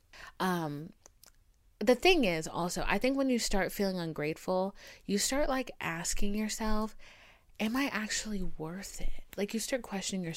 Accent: American